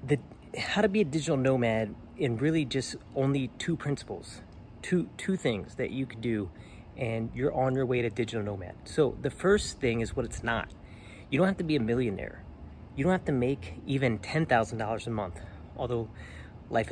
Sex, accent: male, American